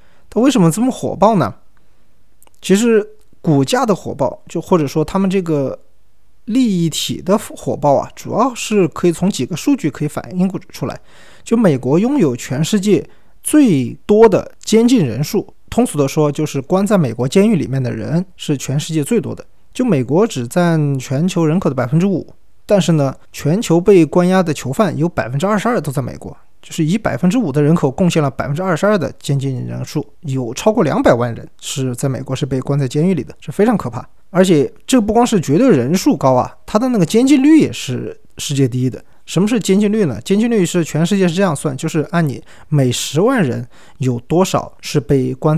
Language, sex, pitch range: Chinese, male, 135-195 Hz